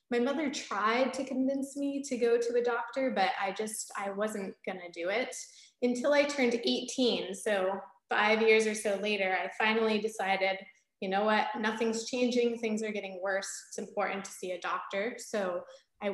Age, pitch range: 20-39, 195-235 Hz